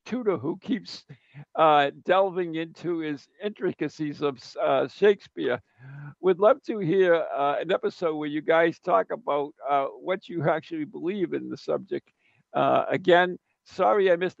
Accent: American